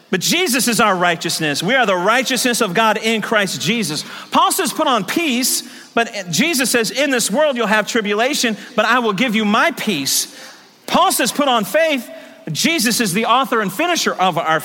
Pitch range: 225-325 Hz